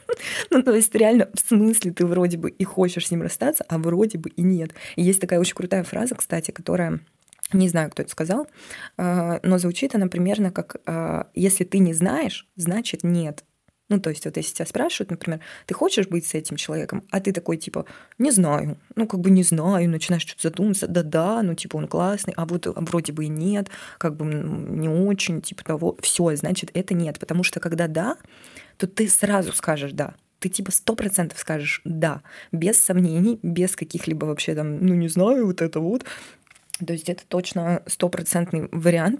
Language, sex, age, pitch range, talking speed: Russian, female, 20-39, 165-195 Hz, 190 wpm